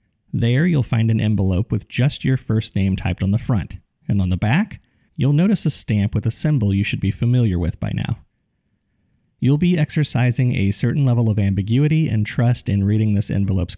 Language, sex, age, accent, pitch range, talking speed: English, male, 30-49, American, 100-130 Hz, 200 wpm